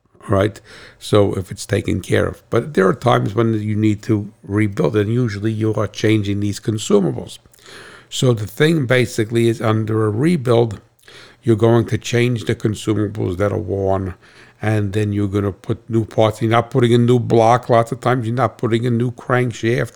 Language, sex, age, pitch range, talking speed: English, male, 60-79, 105-120 Hz, 190 wpm